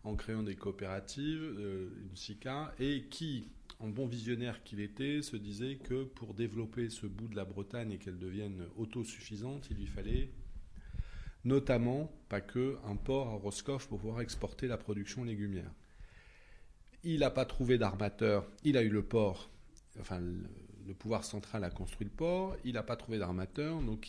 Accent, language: French, French